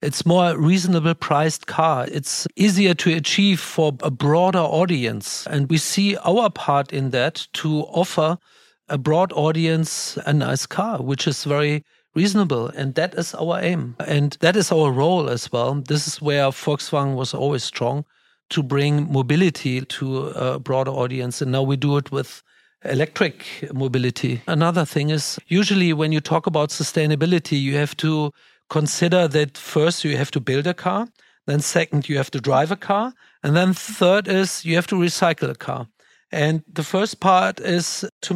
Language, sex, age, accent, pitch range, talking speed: English, male, 50-69, German, 145-175 Hz, 175 wpm